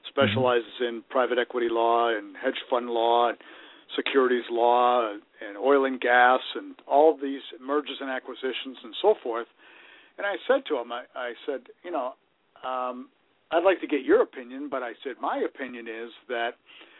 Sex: male